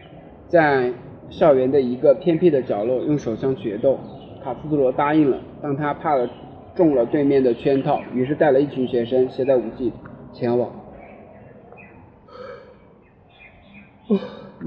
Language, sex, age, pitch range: Chinese, male, 20-39, 125-150 Hz